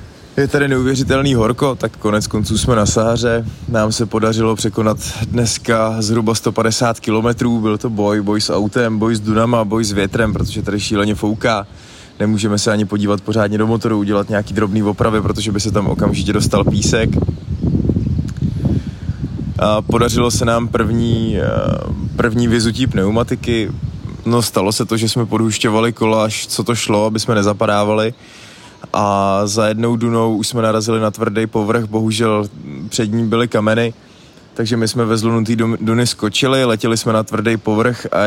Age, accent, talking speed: 20-39, native, 160 wpm